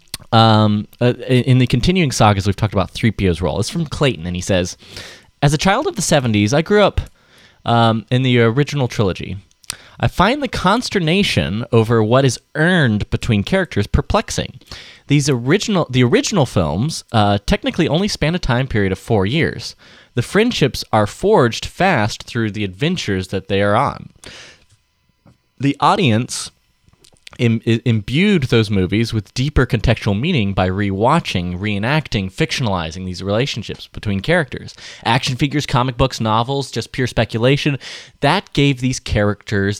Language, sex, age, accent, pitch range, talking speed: English, male, 20-39, American, 100-140 Hz, 150 wpm